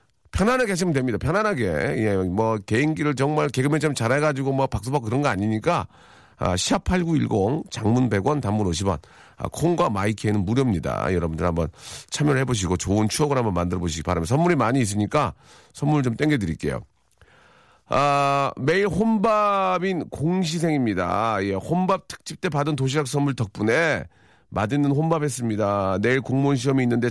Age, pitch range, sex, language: 40-59, 105-145 Hz, male, Korean